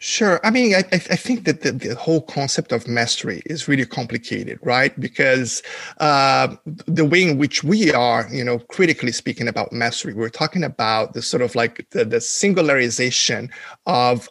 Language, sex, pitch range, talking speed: English, male, 120-155 Hz, 175 wpm